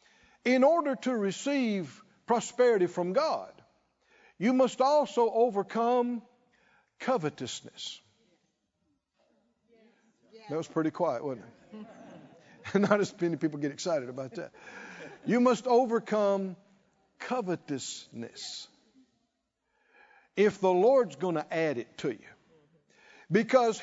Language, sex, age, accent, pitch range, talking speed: English, male, 60-79, American, 165-235 Hz, 100 wpm